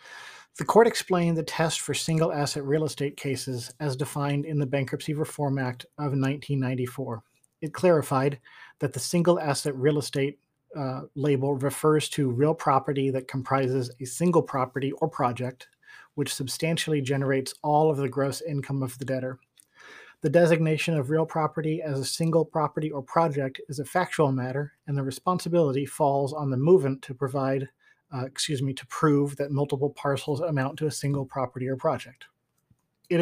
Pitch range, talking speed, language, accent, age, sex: 135-160 Hz, 165 wpm, English, American, 40-59, male